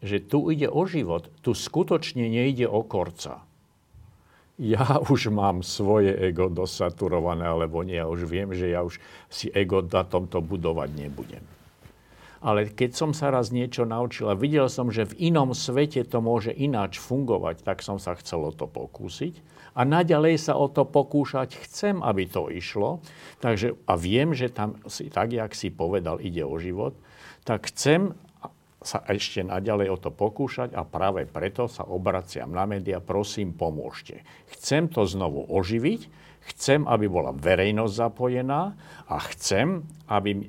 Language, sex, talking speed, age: Slovak, male, 155 wpm, 50-69